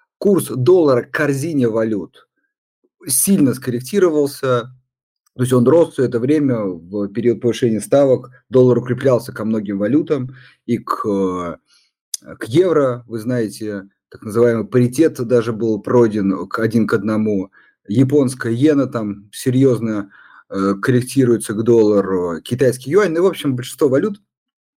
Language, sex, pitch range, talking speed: Russian, male, 105-140 Hz, 125 wpm